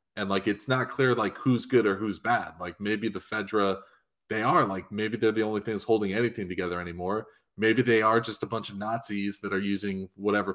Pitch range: 100-120 Hz